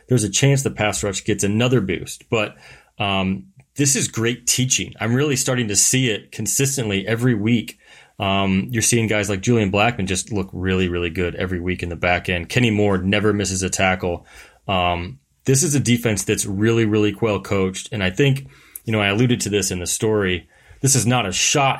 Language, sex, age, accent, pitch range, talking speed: English, male, 30-49, American, 95-120 Hz, 205 wpm